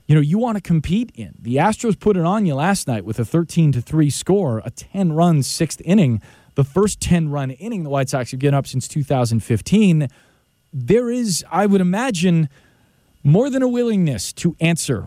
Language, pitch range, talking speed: English, 125-175 Hz, 185 wpm